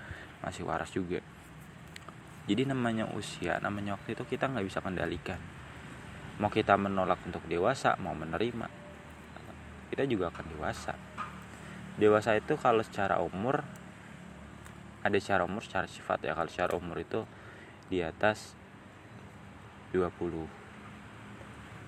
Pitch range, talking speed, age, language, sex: 90-110 Hz, 115 wpm, 20-39, Indonesian, male